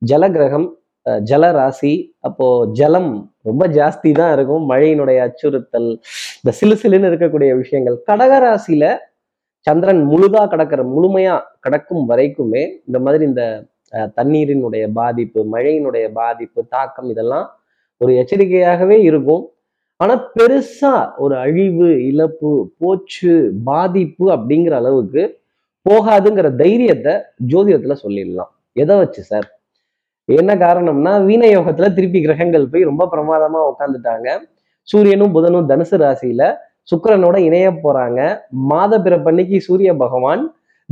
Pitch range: 140-205 Hz